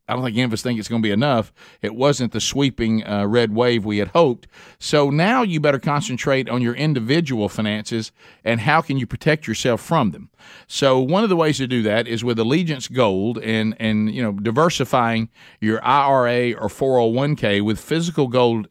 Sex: male